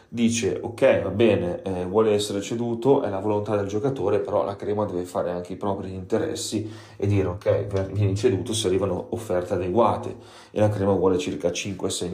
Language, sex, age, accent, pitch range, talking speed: Italian, male, 30-49, native, 95-115 Hz, 185 wpm